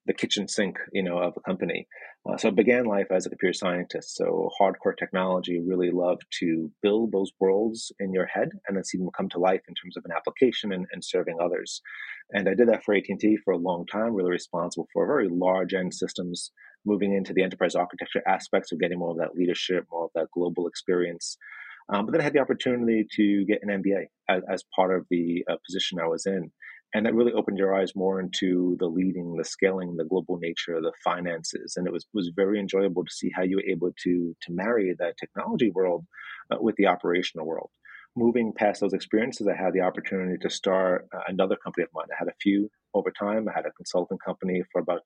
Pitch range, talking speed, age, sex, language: 90-100 Hz, 225 wpm, 30-49, male, English